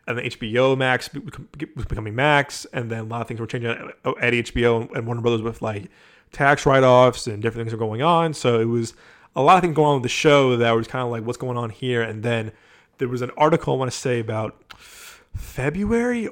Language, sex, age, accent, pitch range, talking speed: English, male, 20-39, American, 115-145 Hz, 230 wpm